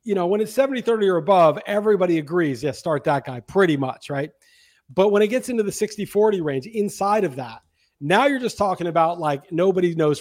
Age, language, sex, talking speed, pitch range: 40-59, English, male, 225 wpm, 165-215 Hz